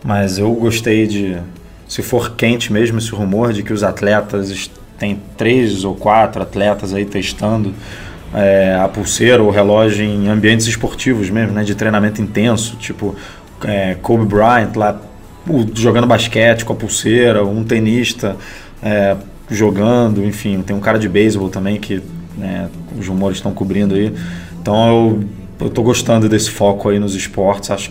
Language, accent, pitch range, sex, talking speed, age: Portuguese, Brazilian, 100-115 Hz, male, 155 wpm, 20-39